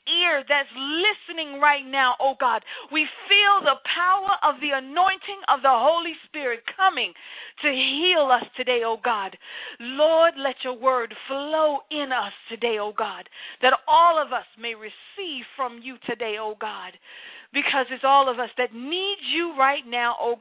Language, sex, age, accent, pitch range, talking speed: English, female, 40-59, American, 240-310 Hz, 170 wpm